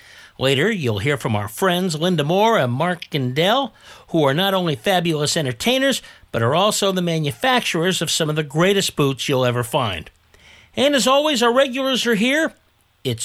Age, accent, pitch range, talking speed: 50-69, American, 135-220 Hz, 175 wpm